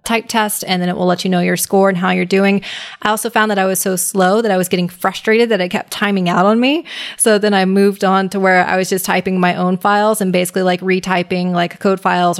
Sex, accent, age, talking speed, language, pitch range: female, American, 20-39, 270 wpm, English, 180-215 Hz